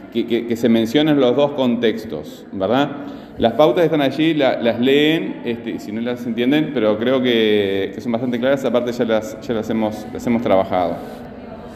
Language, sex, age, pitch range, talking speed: Spanish, male, 30-49, 120-150 Hz, 190 wpm